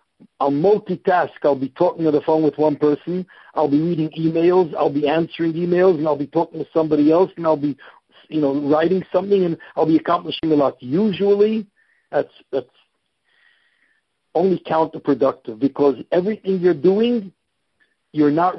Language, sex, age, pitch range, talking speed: English, male, 50-69, 150-175 Hz, 160 wpm